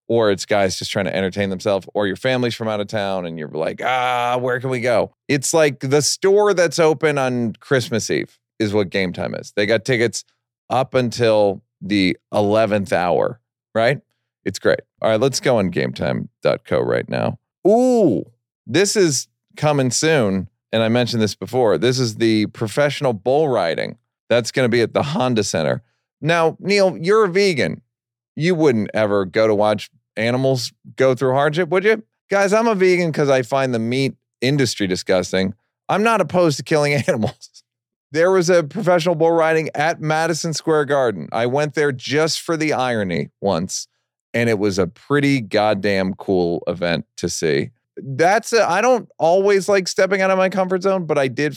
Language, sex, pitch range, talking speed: English, male, 110-160 Hz, 185 wpm